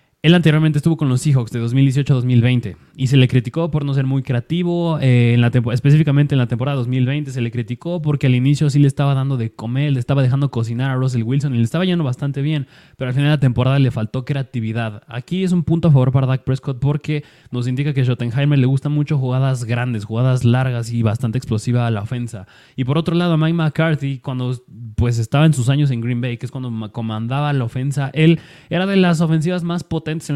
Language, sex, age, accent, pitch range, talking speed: Spanish, male, 20-39, Mexican, 125-150 Hz, 235 wpm